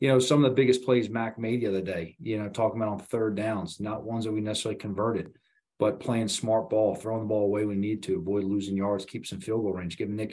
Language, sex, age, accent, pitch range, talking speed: English, male, 40-59, American, 105-125 Hz, 265 wpm